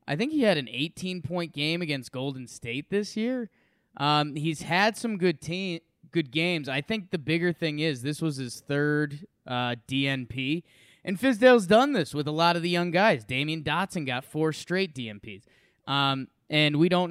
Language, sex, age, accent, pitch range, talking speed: English, male, 20-39, American, 125-170 Hz, 185 wpm